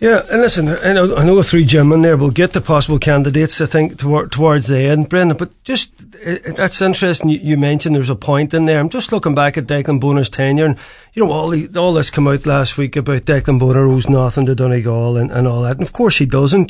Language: English